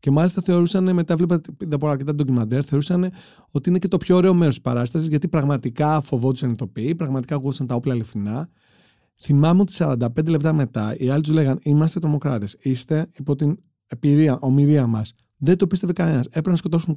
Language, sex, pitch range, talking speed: Greek, male, 115-165 Hz, 175 wpm